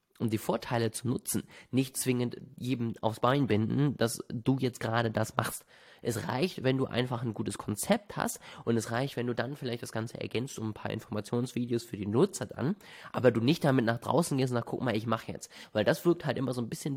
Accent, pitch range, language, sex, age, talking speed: German, 115-135 Hz, German, male, 20-39, 235 wpm